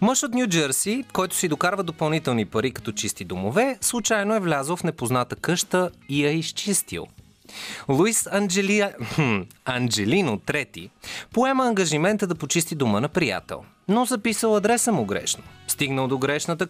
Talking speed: 140 wpm